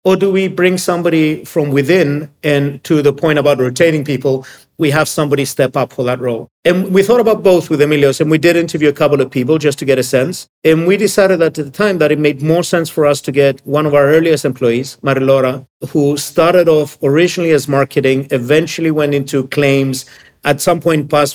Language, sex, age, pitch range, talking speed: English, male, 50-69, 135-165 Hz, 220 wpm